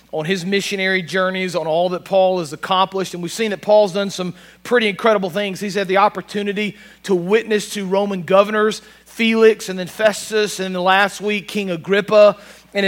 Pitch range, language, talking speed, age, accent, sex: 190-220 Hz, English, 180 wpm, 40-59, American, male